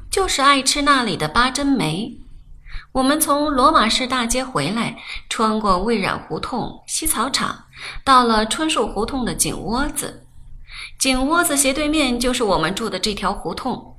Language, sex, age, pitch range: Chinese, female, 20-39, 200-270 Hz